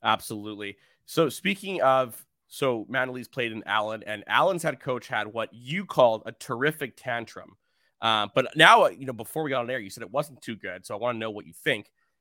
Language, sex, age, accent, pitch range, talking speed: English, male, 30-49, American, 110-140 Hz, 215 wpm